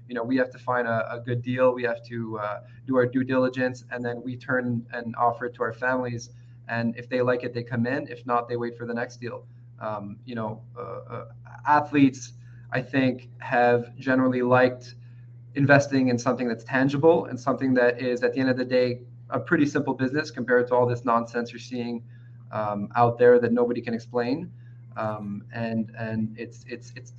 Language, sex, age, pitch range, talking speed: English, male, 20-39, 120-135 Hz, 205 wpm